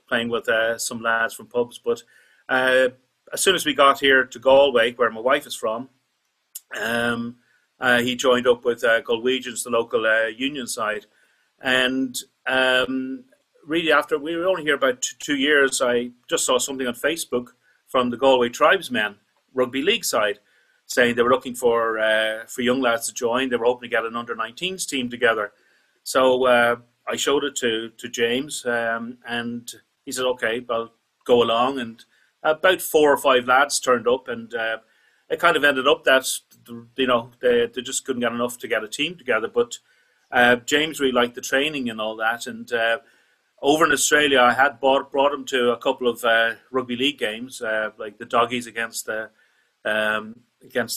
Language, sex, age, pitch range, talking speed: English, male, 40-59, 115-135 Hz, 185 wpm